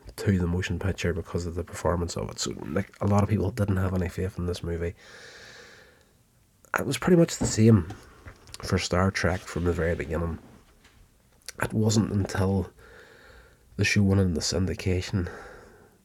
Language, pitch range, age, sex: English, 90-110 Hz, 30-49, male